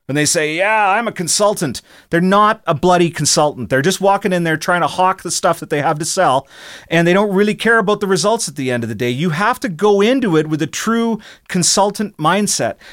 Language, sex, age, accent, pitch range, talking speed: English, male, 40-59, American, 155-205 Hz, 240 wpm